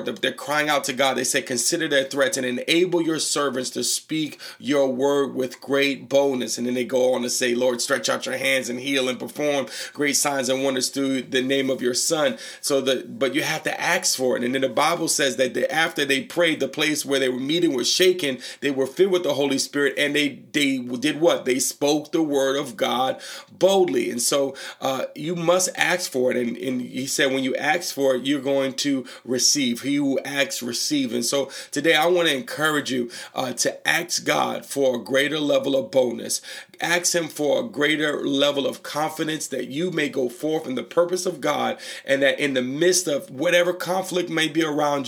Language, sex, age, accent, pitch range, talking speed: English, male, 40-59, American, 130-160 Hz, 220 wpm